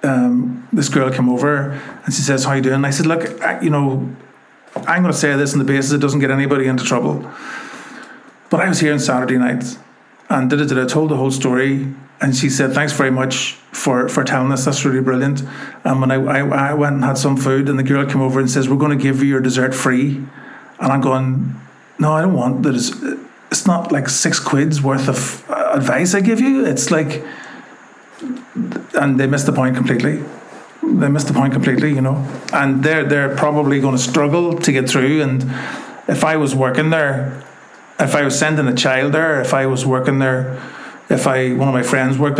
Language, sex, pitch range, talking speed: English, male, 130-150 Hz, 225 wpm